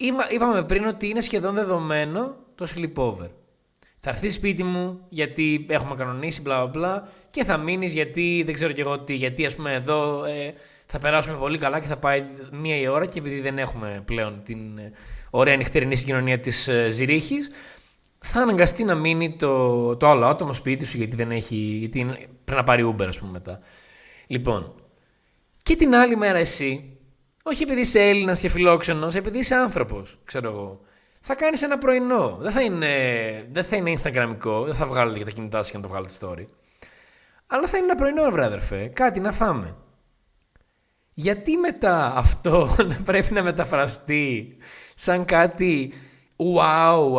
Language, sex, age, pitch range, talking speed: Greek, male, 20-39, 125-185 Hz, 170 wpm